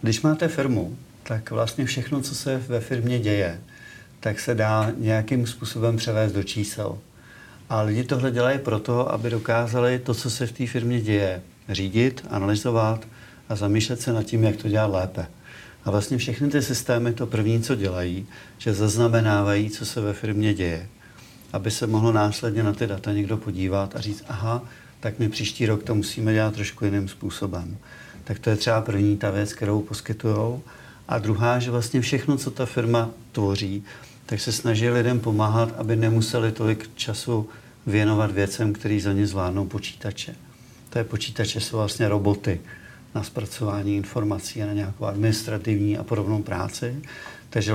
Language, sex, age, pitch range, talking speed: Czech, male, 50-69, 105-120 Hz, 165 wpm